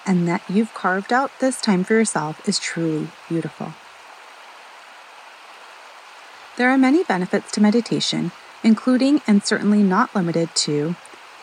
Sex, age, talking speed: female, 30-49, 125 wpm